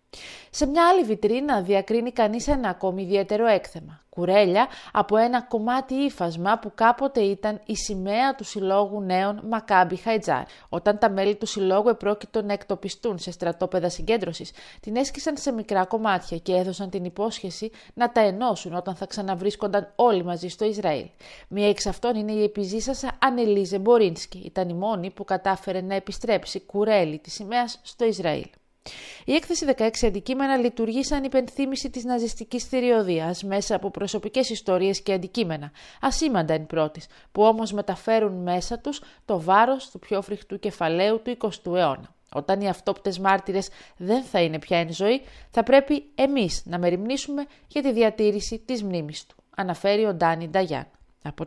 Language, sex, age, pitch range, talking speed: Greek, female, 30-49, 190-235 Hz, 155 wpm